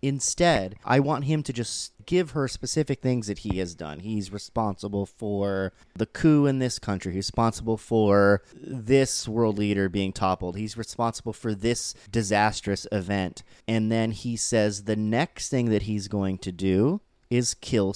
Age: 30-49